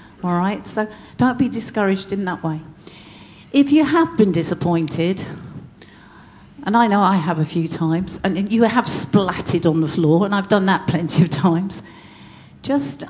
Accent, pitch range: British, 165-210 Hz